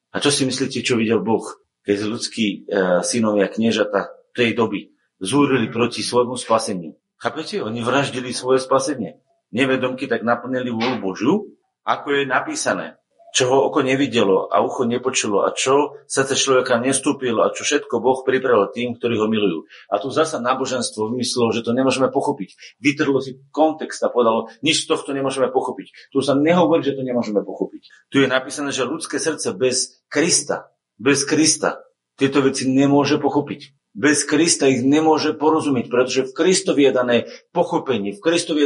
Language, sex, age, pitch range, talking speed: Slovak, male, 40-59, 125-155 Hz, 170 wpm